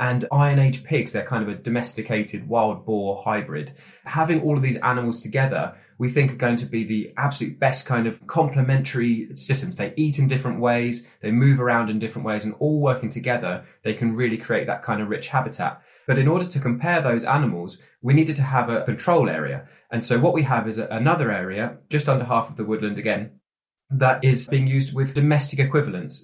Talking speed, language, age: 210 wpm, English, 20-39